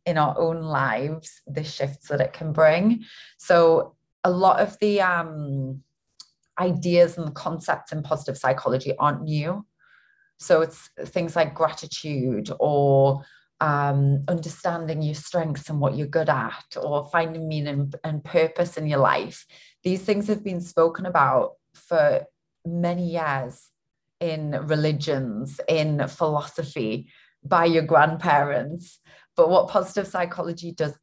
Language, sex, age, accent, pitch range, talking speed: English, female, 30-49, British, 145-175 Hz, 135 wpm